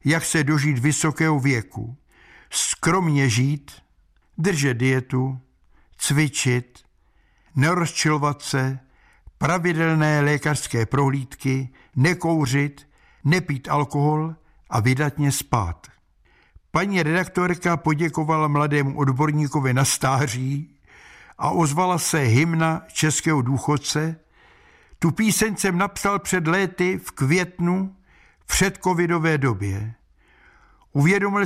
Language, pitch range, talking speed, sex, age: Czech, 130-165 Hz, 90 wpm, male, 60-79